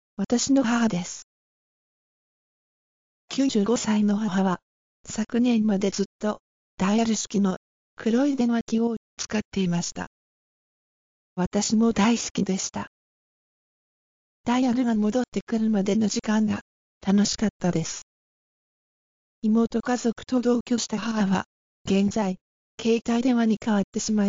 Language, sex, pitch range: Japanese, female, 195-235 Hz